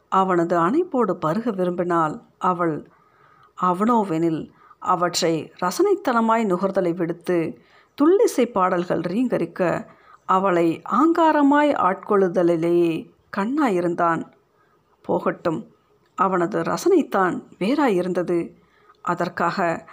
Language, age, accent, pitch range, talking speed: Tamil, 50-69, native, 180-280 Hz, 65 wpm